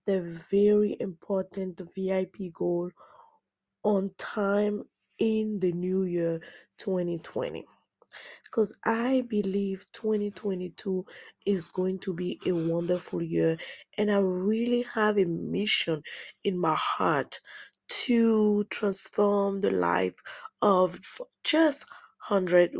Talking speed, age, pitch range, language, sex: 105 wpm, 20-39, 180-215 Hz, English, female